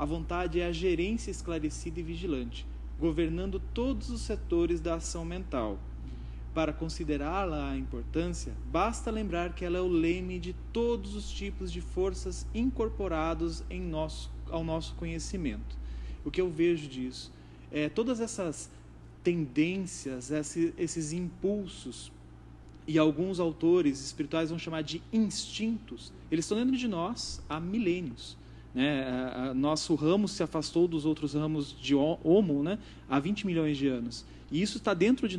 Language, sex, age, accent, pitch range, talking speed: Portuguese, male, 30-49, Brazilian, 150-200 Hz, 140 wpm